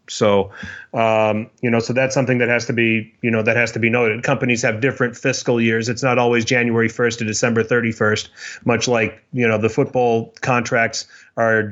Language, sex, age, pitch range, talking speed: English, male, 30-49, 115-135 Hz, 200 wpm